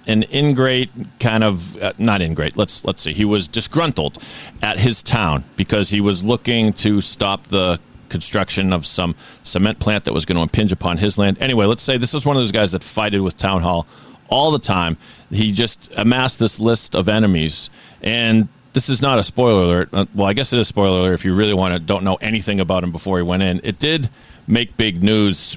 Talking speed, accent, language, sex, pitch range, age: 220 wpm, American, English, male, 90-115 Hz, 40-59